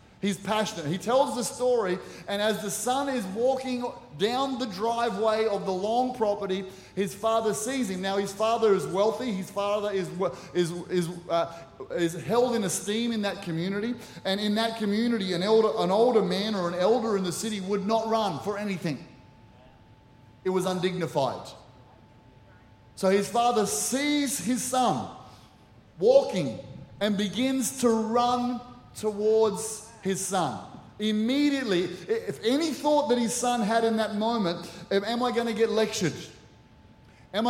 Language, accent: English, Australian